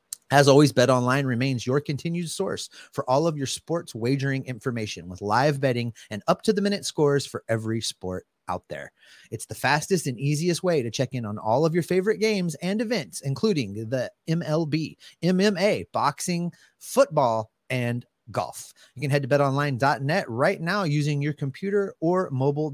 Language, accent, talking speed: English, American, 165 wpm